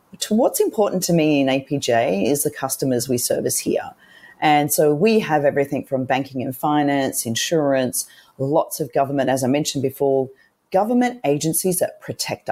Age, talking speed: 40-59, 160 wpm